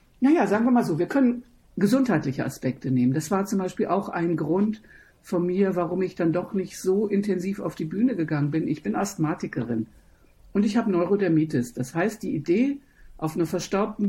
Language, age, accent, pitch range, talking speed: German, 60-79, German, 160-205 Hz, 190 wpm